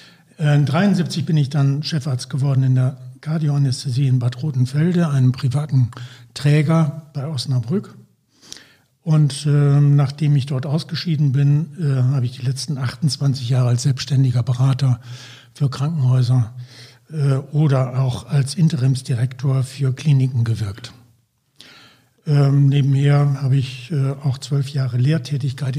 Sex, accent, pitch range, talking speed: male, German, 130-150 Hz, 125 wpm